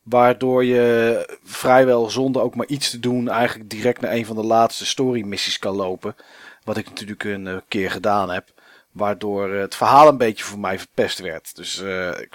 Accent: Dutch